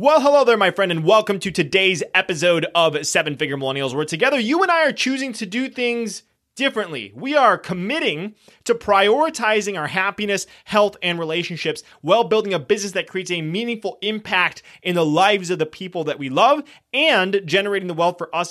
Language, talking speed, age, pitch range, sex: English, 190 wpm, 20-39, 165-200 Hz, male